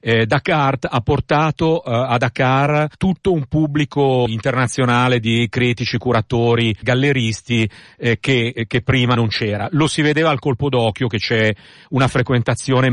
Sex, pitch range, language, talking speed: male, 115-145 Hz, Italian, 145 wpm